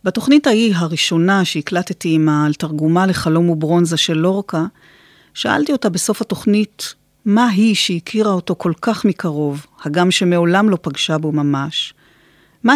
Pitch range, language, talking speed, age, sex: 165-205 Hz, Hebrew, 135 wpm, 40-59, female